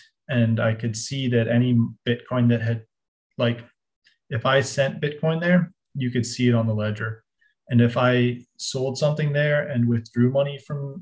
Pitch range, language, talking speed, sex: 115-125 Hz, English, 175 wpm, male